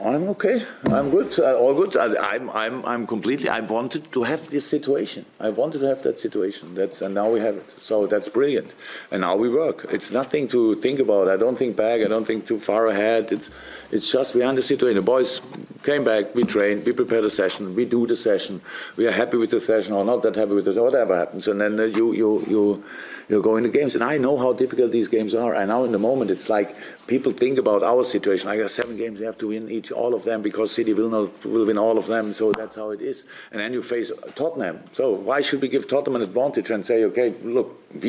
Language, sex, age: English, male, 50-69